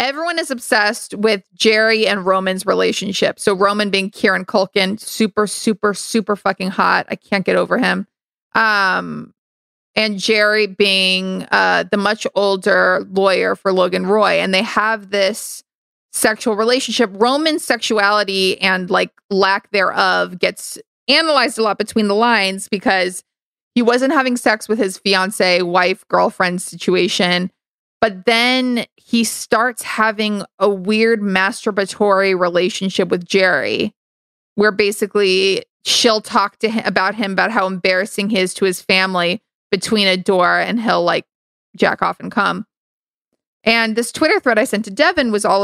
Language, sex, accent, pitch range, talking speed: English, female, American, 190-225 Hz, 145 wpm